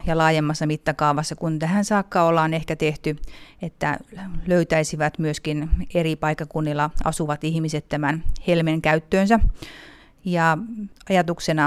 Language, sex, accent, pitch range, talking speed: Finnish, female, native, 155-170 Hz, 105 wpm